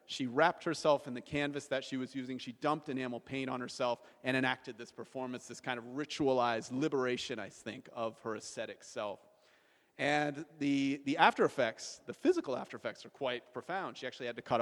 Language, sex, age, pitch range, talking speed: English, male, 40-59, 120-150 Hz, 195 wpm